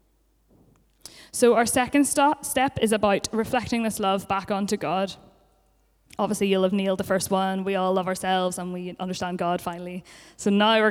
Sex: female